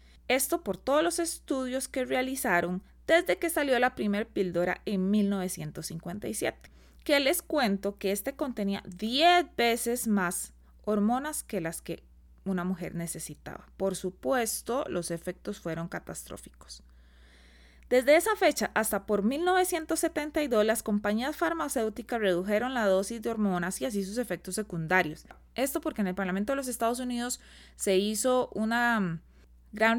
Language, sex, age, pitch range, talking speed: Spanish, female, 20-39, 180-250 Hz, 140 wpm